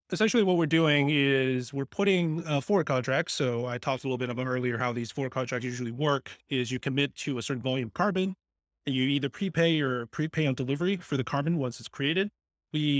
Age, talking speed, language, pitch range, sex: 30-49, 220 wpm, English, 130-165 Hz, male